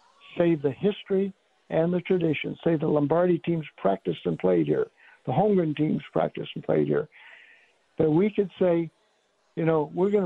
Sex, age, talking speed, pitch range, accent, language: male, 60-79, 170 wpm, 150-180 Hz, American, English